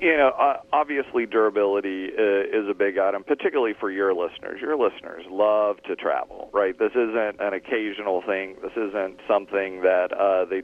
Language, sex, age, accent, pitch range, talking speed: English, male, 40-59, American, 95-150 Hz, 165 wpm